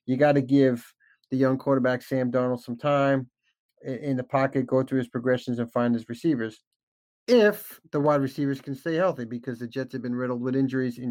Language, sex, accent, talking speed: English, male, American, 205 wpm